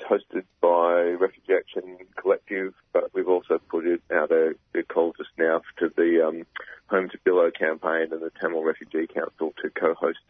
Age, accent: 40-59, Australian